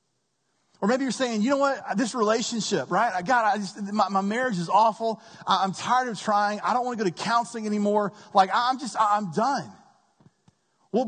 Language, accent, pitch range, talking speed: English, American, 180-230 Hz, 180 wpm